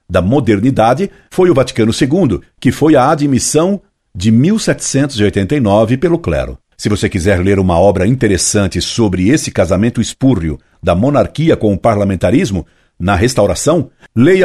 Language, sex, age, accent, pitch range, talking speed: Portuguese, male, 60-79, Brazilian, 95-125 Hz, 135 wpm